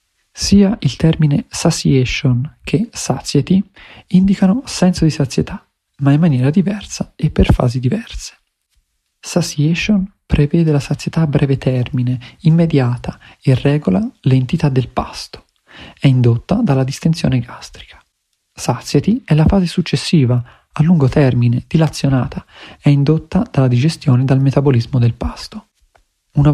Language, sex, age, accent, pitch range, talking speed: Italian, male, 40-59, native, 130-175 Hz, 125 wpm